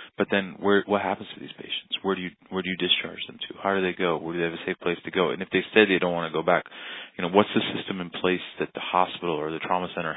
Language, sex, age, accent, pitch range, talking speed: English, male, 20-39, American, 85-95 Hz, 320 wpm